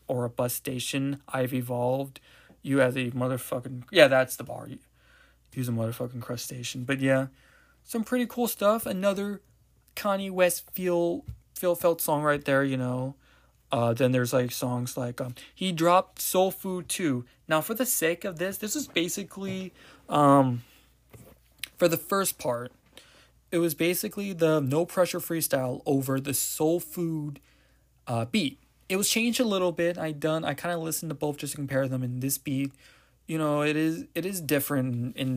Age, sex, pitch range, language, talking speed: 20-39, male, 130-165 Hz, English, 175 wpm